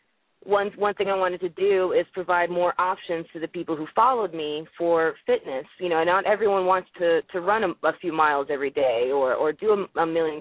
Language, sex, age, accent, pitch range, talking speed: English, female, 20-39, American, 165-200 Hz, 225 wpm